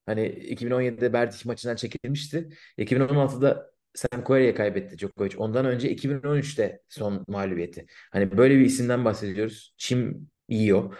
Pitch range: 100-130 Hz